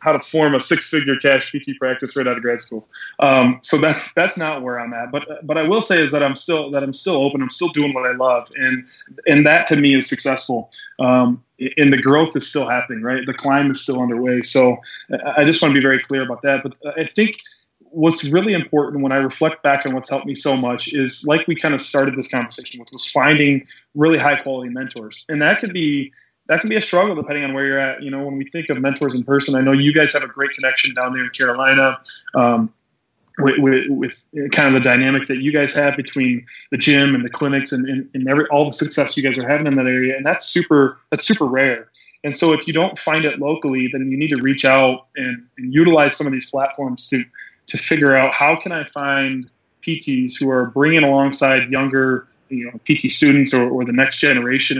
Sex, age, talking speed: male, 20-39, 235 wpm